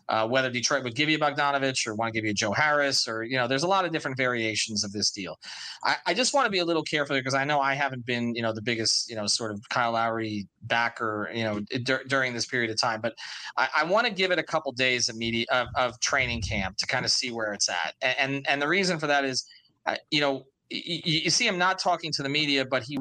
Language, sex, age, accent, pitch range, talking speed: English, male, 30-49, American, 115-145 Hz, 280 wpm